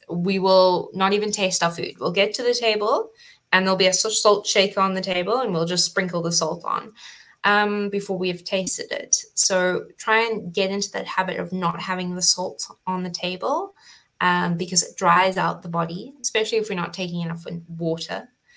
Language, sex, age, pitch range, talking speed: English, female, 20-39, 175-195 Hz, 205 wpm